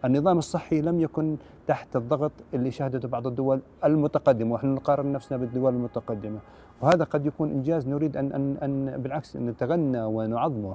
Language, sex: Arabic, male